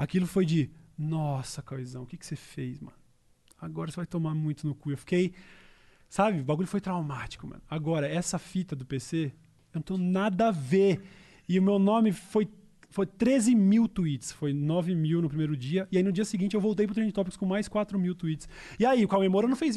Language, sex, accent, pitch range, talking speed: Portuguese, male, Brazilian, 175-255 Hz, 225 wpm